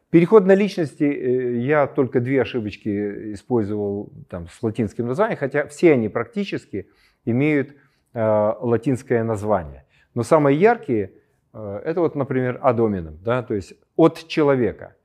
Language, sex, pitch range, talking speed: Ukrainian, male, 110-155 Hz, 130 wpm